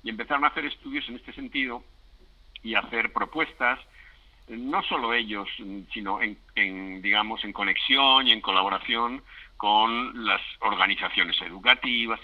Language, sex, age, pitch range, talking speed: English, male, 60-79, 100-135 Hz, 130 wpm